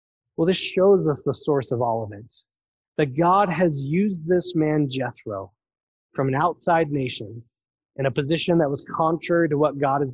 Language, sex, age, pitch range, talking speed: English, male, 20-39, 130-165 Hz, 185 wpm